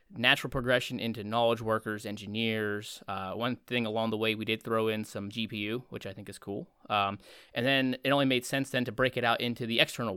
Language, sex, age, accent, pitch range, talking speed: English, male, 20-39, American, 110-125 Hz, 225 wpm